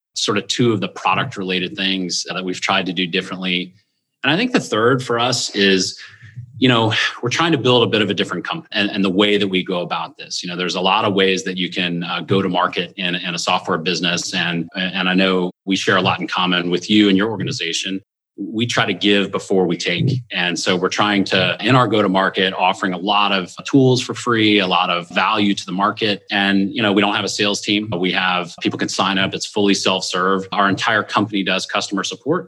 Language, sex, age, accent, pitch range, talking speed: English, male, 30-49, American, 95-110 Hz, 240 wpm